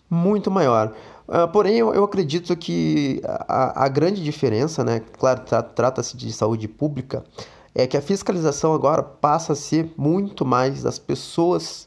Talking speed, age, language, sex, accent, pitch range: 145 wpm, 20-39, Portuguese, male, Brazilian, 115-150 Hz